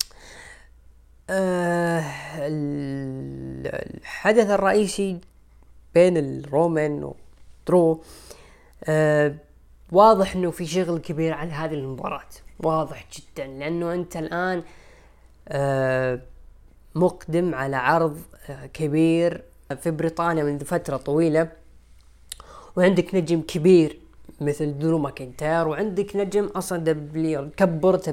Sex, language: female, Arabic